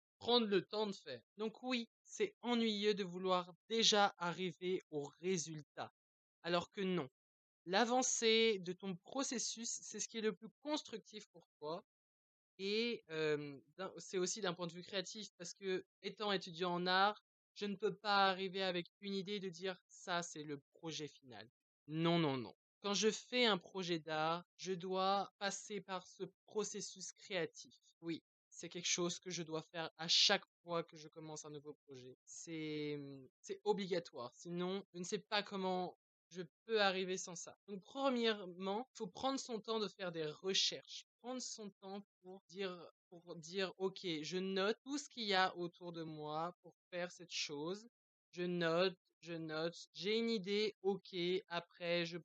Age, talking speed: 20-39, 175 wpm